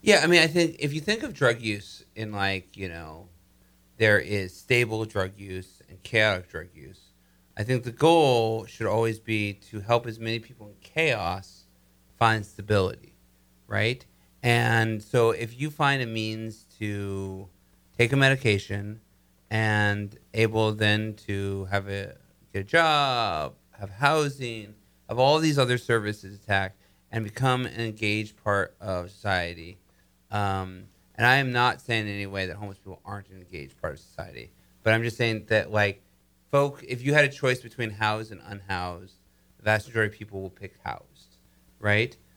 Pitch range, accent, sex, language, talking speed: 95-115 Hz, American, male, English, 165 wpm